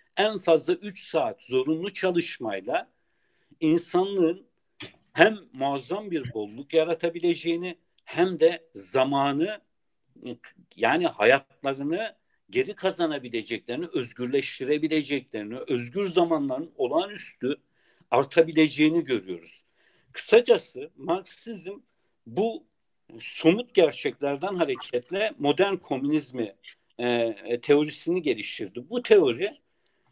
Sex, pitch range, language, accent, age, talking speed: male, 140-210 Hz, Turkish, native, 60-79, 75 wpm